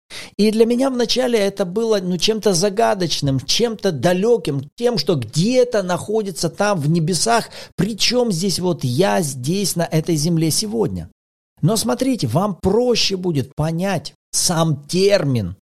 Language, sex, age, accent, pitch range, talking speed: Russian, male, 40-59, native, 125-210 Hz, 135 wpm